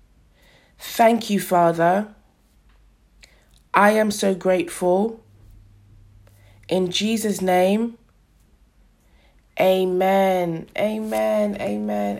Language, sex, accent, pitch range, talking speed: English, female, British, 195-225 Hz, 65 wpm